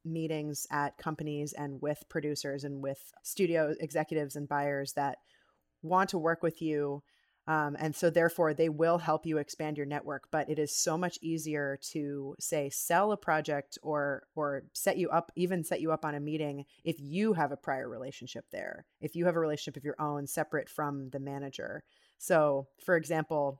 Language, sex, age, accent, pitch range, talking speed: English, female, 30-49, American, 145-165 Hz, 190 wpm